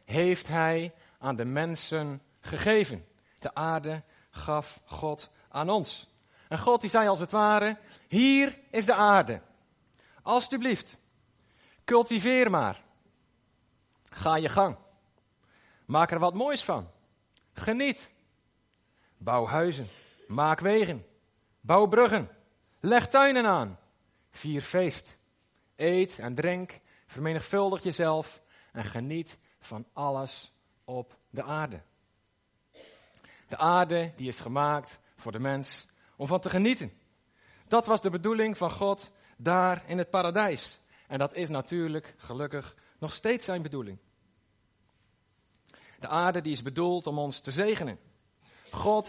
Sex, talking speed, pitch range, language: male, 120 wpm, 125-190 Hz, Dutch